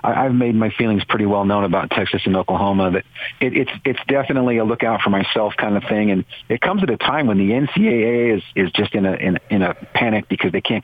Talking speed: 245 wpm